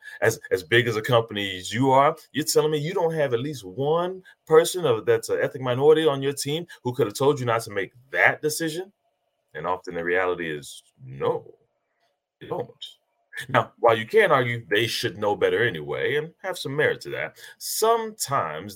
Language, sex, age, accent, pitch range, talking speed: English, male, 30-49, American, 125-200 Hz, 200 wpm